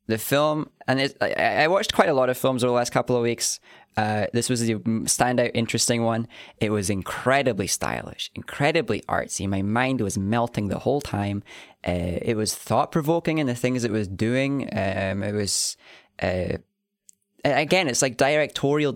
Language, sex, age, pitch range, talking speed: English, male, 20-39, 100-130 Hz, 170 wpm